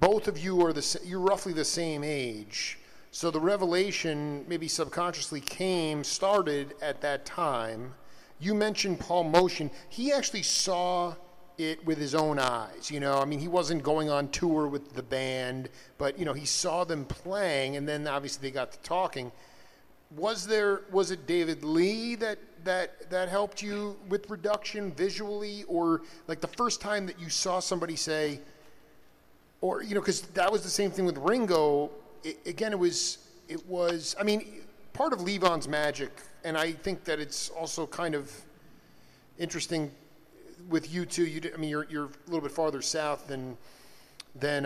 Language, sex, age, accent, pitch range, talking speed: English, male, 40-59, American, 145-190 Hz, 175 wpm